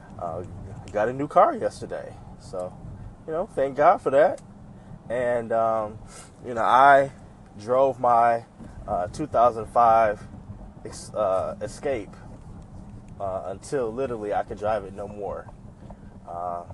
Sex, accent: male, American